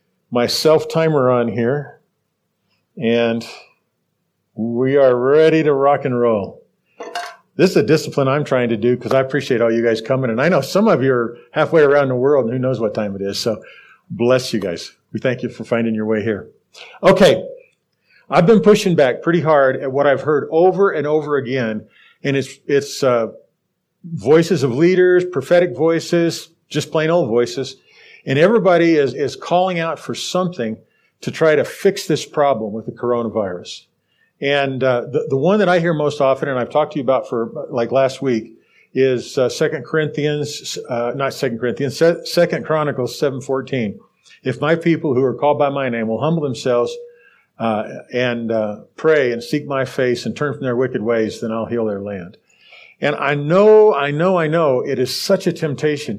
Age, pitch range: 50-69, 120-160 Hz